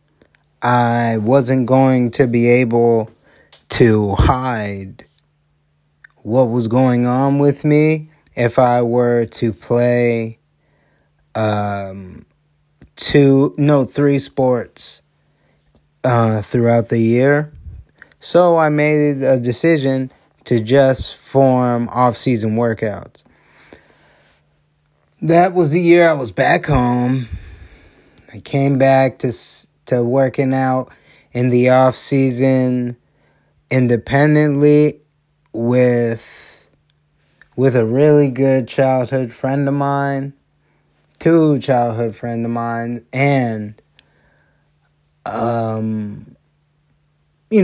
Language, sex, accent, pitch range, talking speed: English, male, American, 115-140 Hz, 95 wpm